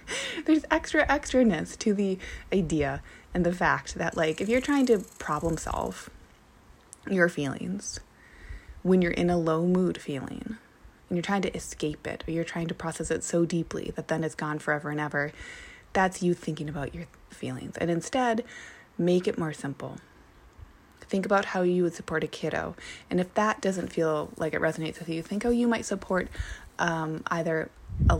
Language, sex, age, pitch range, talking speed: English, female, 20-39, 160-210 Hz, 185 wpm